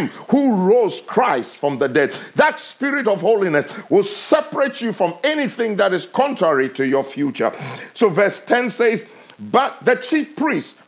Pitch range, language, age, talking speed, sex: 160-240 Hz, English, 50-69, 160 wpm, male